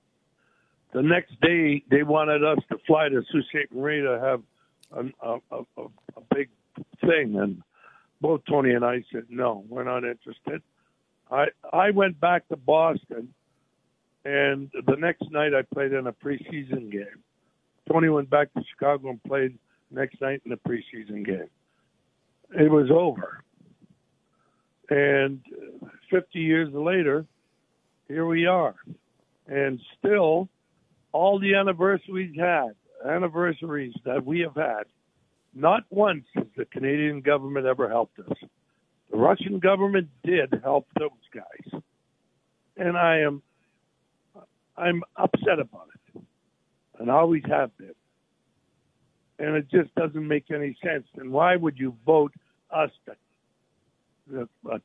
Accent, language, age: American, English, 60-79